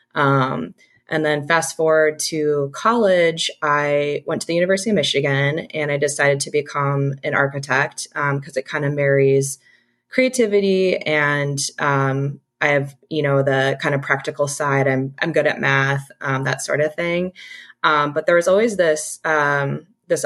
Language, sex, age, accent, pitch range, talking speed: English, female, 20-39, American, 140-165 Hz, 170 wpm